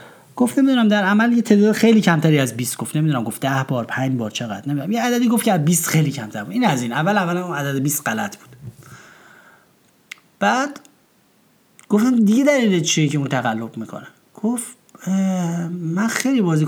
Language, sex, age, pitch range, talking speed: Persian, male, 30-49, 140-205 Hz, 175 wpm